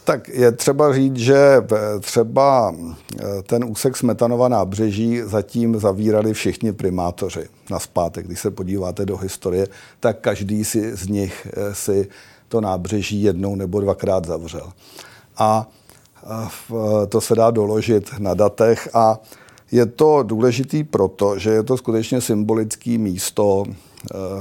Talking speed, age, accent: 125 wpm, 50-69, native